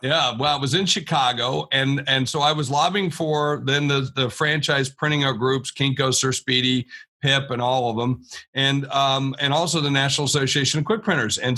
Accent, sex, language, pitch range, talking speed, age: American, male, English, 130-160 Hz, 195 wpm, 50-69